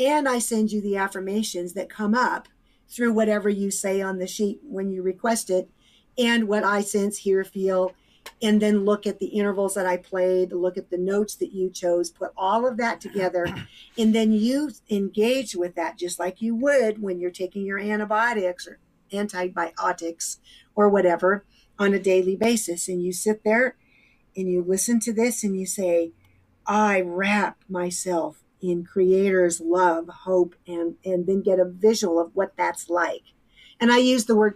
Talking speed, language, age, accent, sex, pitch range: 180 wpm, English, 50-69, American, female, 180-215 Hz